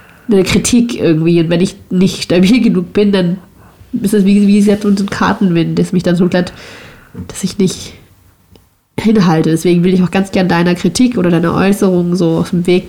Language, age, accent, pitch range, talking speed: German, 30-49, German, 180-210 Hz, 200 wpm